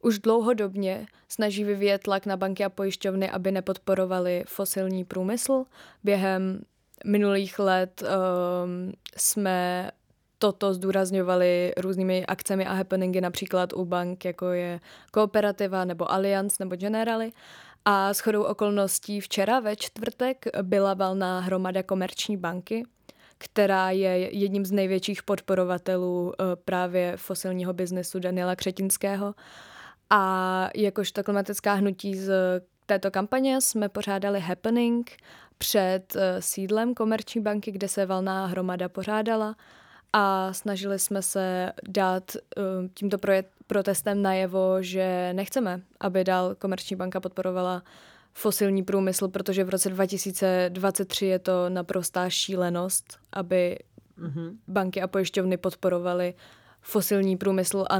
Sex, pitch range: female, 185-200 Hz